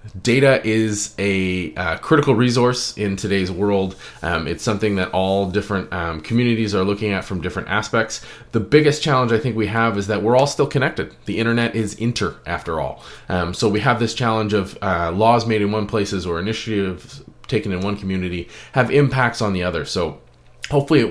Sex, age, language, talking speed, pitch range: male, 20-39, English, 195 wpm, 90-120 Hz